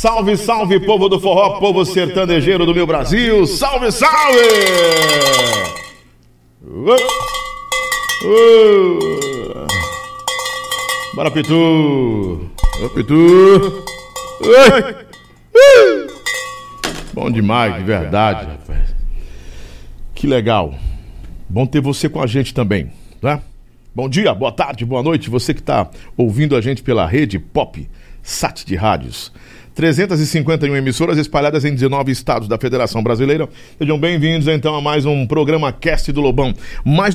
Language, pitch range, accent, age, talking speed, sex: Portuguese, 120-185 Hz, Brazilian, 50-69, 110 wpm, male